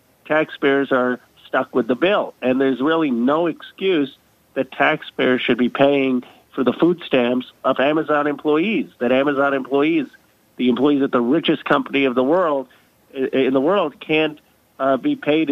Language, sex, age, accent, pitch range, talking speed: English, male, 40-59, American, 125-145 Hz, 160 wpm